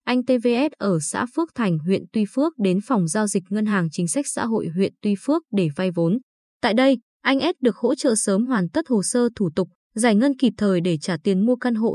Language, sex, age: Vietnamese, female, 20-39